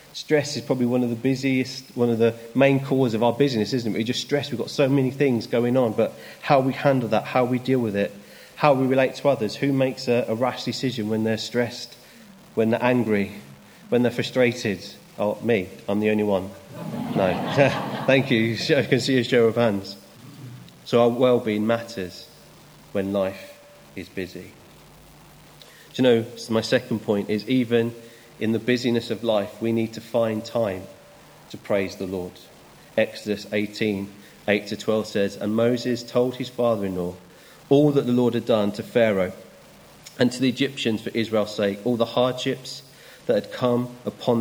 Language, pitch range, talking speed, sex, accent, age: English, 110-130 Hz, 185 wpm, male, British, 30-49